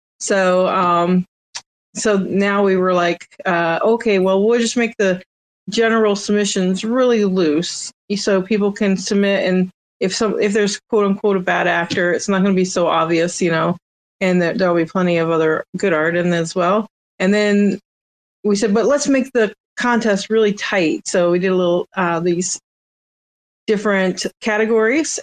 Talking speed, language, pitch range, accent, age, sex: 175 wpm, English, 185-215 Hz, American, 30-49, female